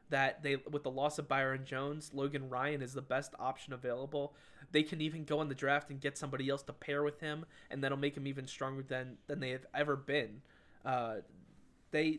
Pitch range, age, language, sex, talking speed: 135-150 Hz, 20-39, English, male, 215 wpm